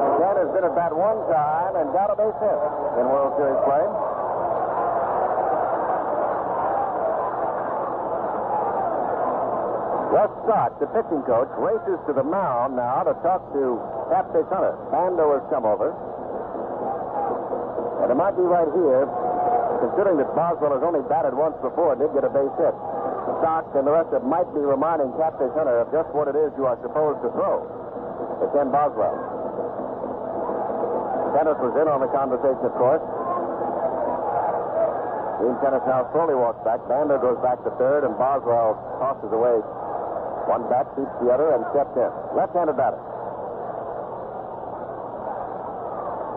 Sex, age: male, 60-79